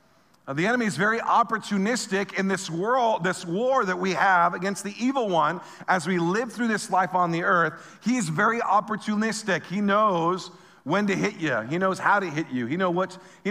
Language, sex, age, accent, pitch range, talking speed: English, male, 50-69, American, 155-205 Hz, 210 wpm